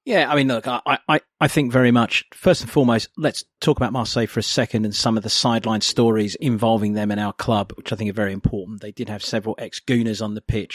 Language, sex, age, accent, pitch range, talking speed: English, male, 30-49, British, 105-125 Hz, 245 wpm